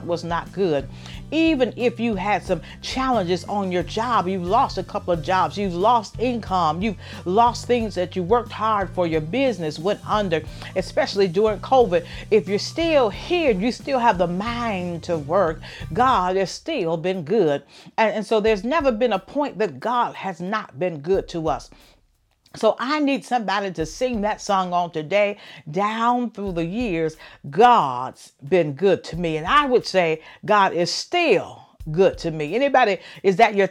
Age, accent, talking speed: 50-69, American, 180 wpm